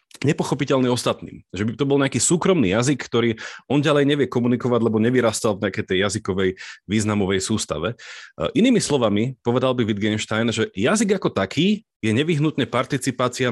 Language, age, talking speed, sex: Slovak, 30-49, 150 wpm, male